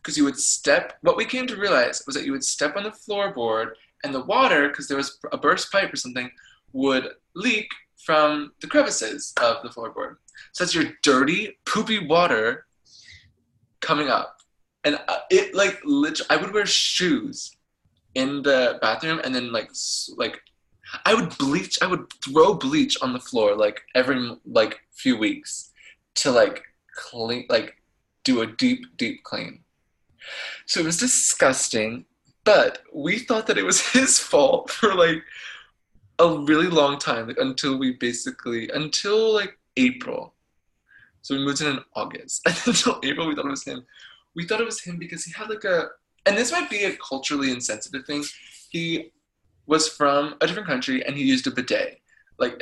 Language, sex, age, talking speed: English, male, 20-39, 170 wpm